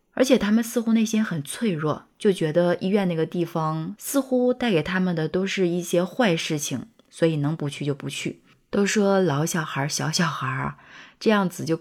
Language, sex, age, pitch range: Chinese, female, 20-39, 150-180 Hz